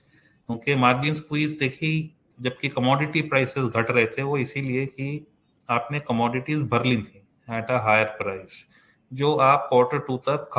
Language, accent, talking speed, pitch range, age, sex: English, Indian, 110 wpm, 120-150 Hz, 30-49, male